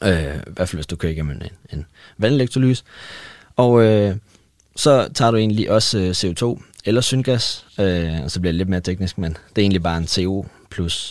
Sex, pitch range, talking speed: male, 85-110 Hz, 190 wpm